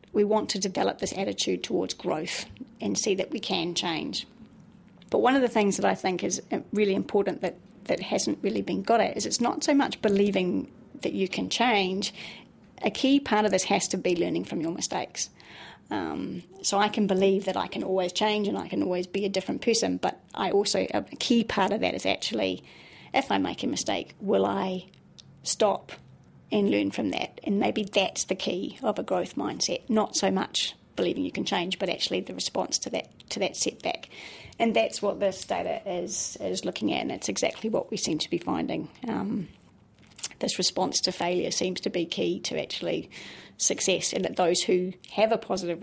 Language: English